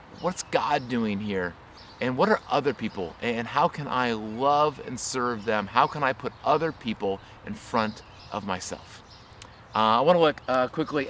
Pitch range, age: 125-160 Hz, 30-49